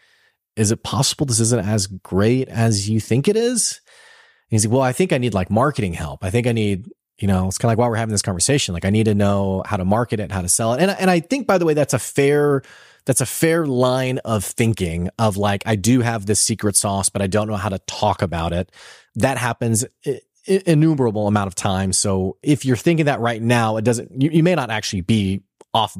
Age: 30-49